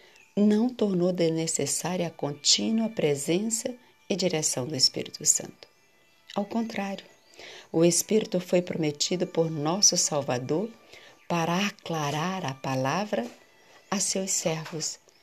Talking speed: 105 wpm